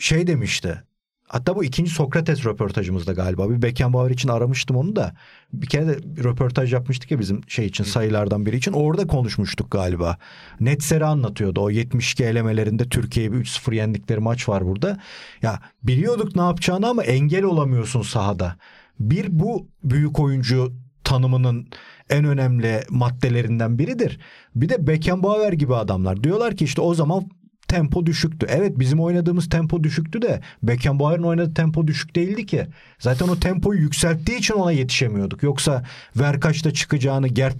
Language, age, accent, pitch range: Turkish, 40-59, native, 115-160 Hz